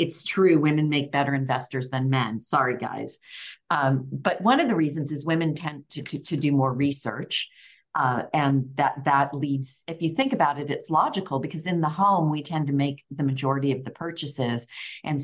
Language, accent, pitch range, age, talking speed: English, American, 135-165 Hz, 50-69, 200 wpm